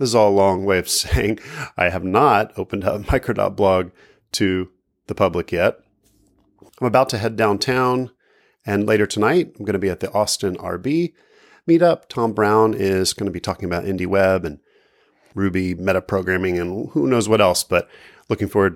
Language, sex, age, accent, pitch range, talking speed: English, male, 30-49, American, 95-125 Hz, 175 wpm